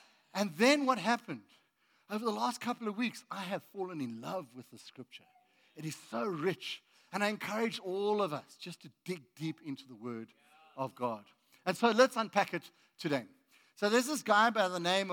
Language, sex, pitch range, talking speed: English, male, 175-245 Hz, 200 wpm